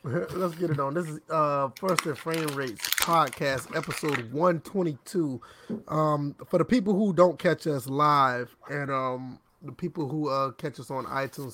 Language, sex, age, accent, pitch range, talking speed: English, male, 30-49, American, 135-165 Hz, 175 wpm